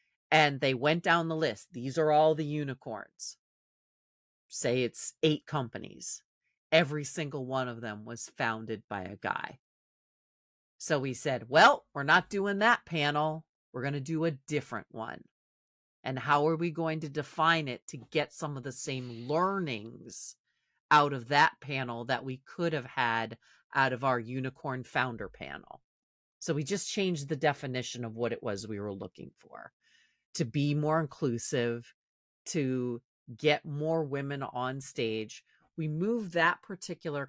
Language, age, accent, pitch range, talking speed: English, 40-59, American, 125-160 Hz, 160 wpm